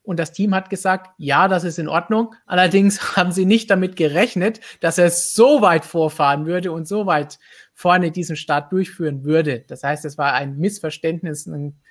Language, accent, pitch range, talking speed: German, German, 155-200 Hz, 185 wpm